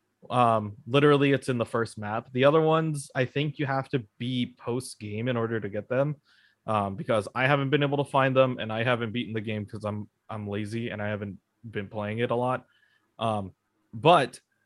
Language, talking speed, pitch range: English, 215 wpm, 105-135 Hz